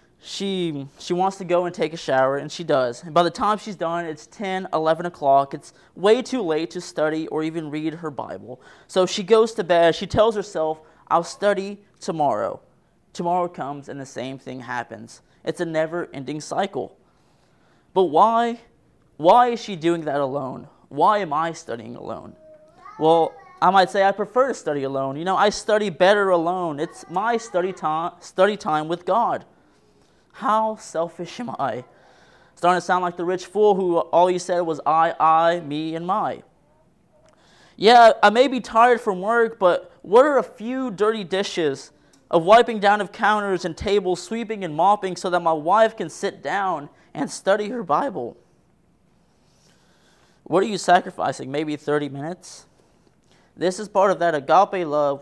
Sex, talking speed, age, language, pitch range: male, 175 wpm, 20-39, English, 160-205 Hz